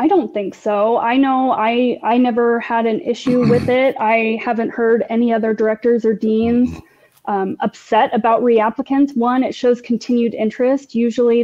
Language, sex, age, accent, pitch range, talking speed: English, female, 20-39, American, 215-245 Hz, 170 wpm